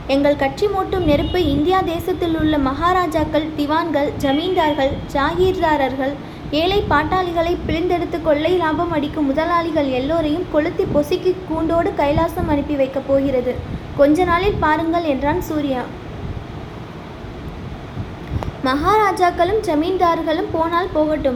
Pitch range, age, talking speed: 290-360 Hz, 20-39, 95 wpm